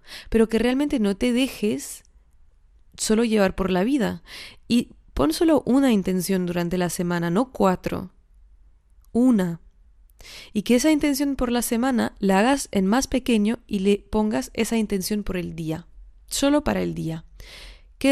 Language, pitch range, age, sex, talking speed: Spanish, 185-225 Hz, 20-39, female, 155 wpm